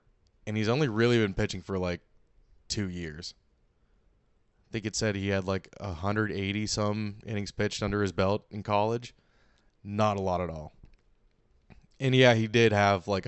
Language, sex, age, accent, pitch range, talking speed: English, male, 20-39, American, 95-110 Hz, 165 wpm